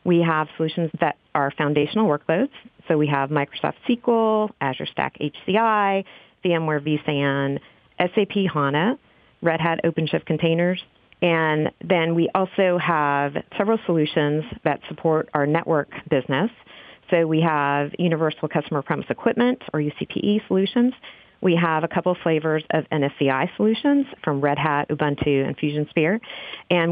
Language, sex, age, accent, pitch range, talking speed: English, female, 40-59, American, 145-185 Hz, 135 wpm